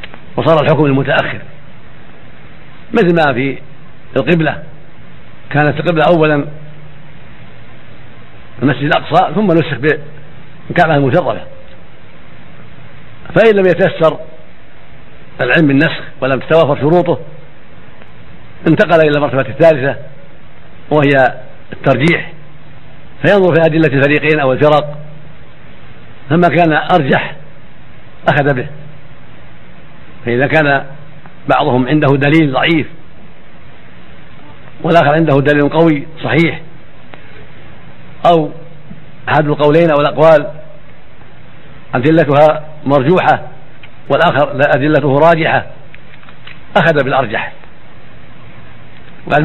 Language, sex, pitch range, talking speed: Arabic, male, 140-160 Hz, 80 wpm